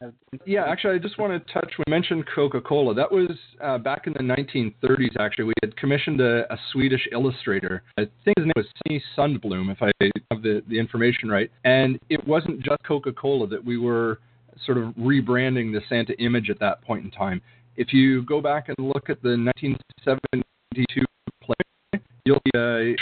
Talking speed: 190 wpm